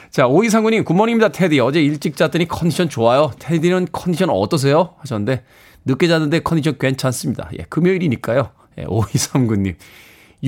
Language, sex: Korean, male